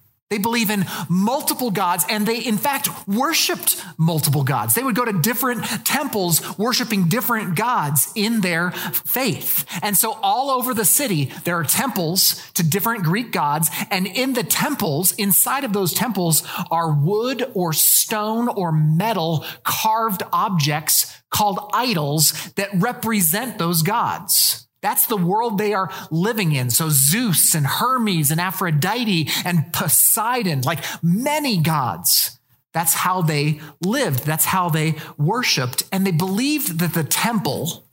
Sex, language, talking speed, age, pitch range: male, English, 145 wpm, 40-59, 155-215 Hz